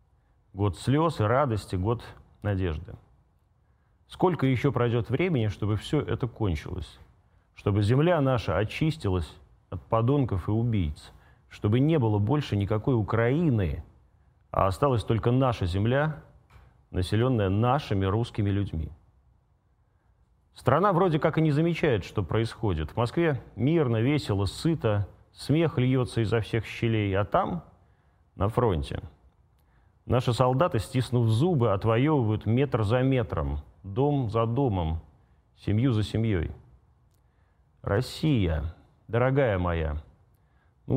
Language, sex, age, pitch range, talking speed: Russian, male, 30-49, 95-130 Hz, 115 wpm